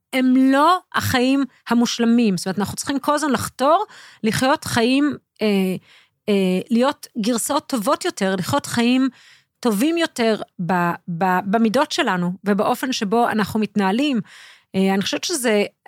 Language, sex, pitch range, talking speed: Hebrew, female, 210-300 Hz, 125 wpm